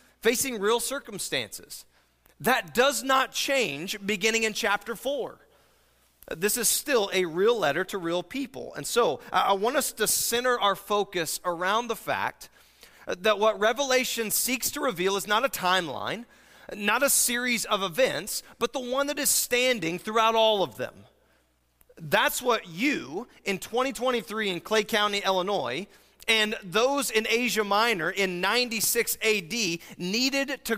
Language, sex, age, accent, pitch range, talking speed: English, male, 30-49, American, 185-245 Hz, 150 wpm